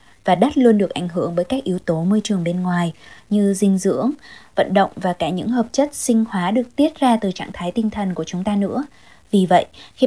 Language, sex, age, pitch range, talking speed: Vietnamese, female, 20-39, 180-230 Hz, 245 wpm